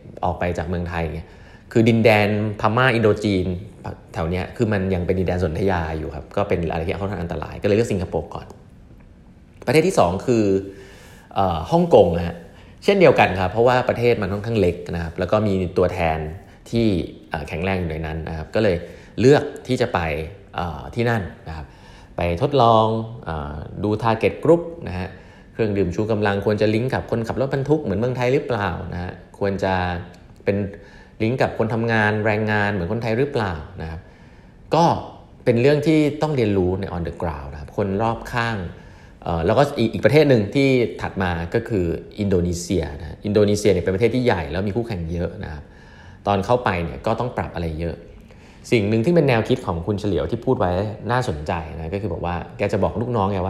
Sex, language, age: male, Thai, 30-49